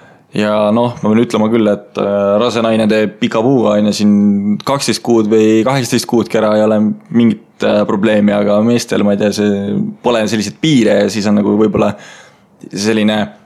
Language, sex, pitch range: English, male, 105-120 Hz